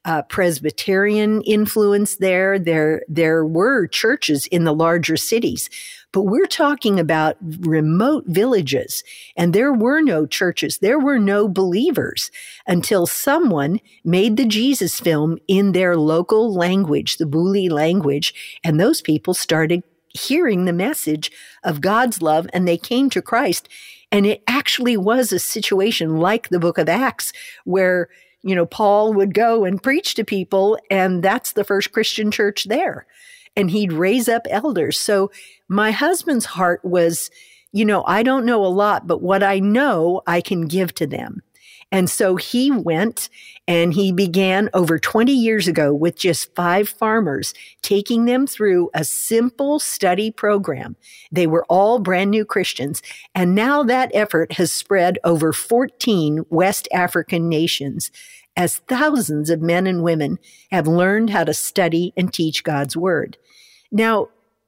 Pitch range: 170-220 Hz